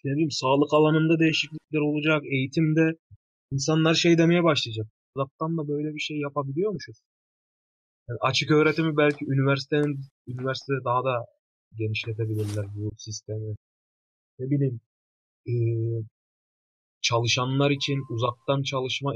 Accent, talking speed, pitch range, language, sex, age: native, 110 wpm, 120-155 Hz, Turkish, male, 30-49